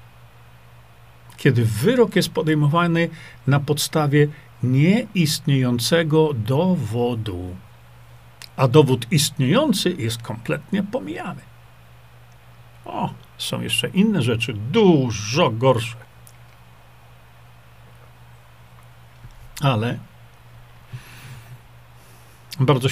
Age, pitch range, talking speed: 50-69, 120-160 Hz, 60 wpm